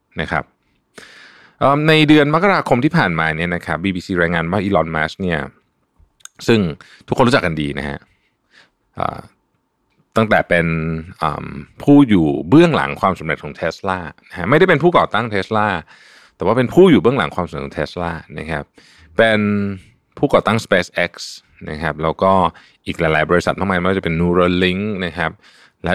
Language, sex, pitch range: Thai, male, 80-115 Hz